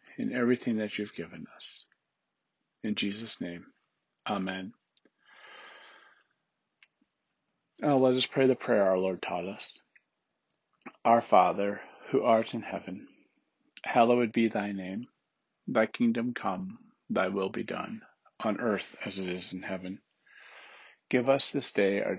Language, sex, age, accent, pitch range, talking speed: English, male, 50-69, American, 100-130 Hz, 135 wpm